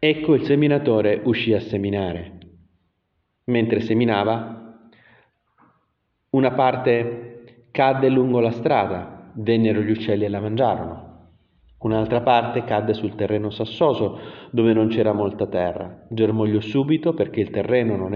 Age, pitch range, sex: 30-49, 95-120 Hz, male